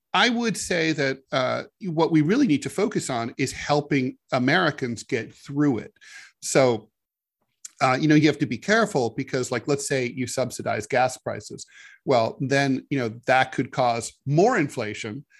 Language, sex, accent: English, male, American